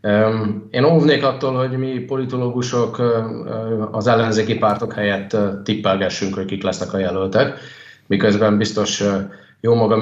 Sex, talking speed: male, 120 wpm